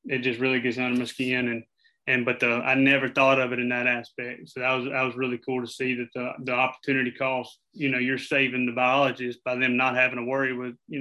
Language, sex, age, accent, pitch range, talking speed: English, male, 30-49, American, 125-140 Hz, 255 wpm